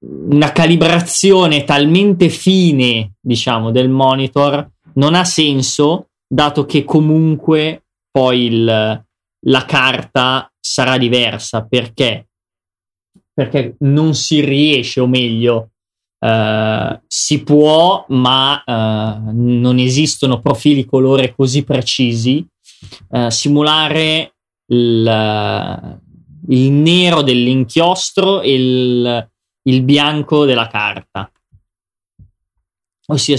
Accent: native